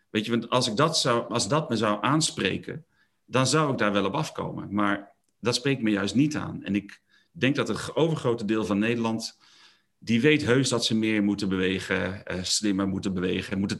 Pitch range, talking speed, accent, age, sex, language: 100-145 Hz, 210 wpm, Dutch, 40-59, male, Dutch